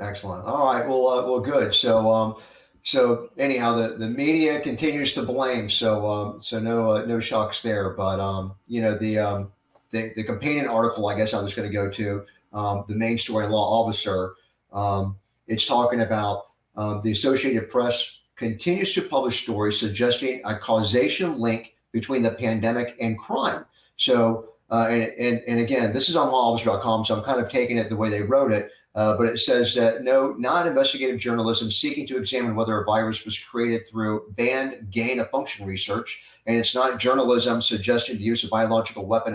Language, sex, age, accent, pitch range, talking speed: English, male, 40-59, American, 110-130 Hz, 190 wpm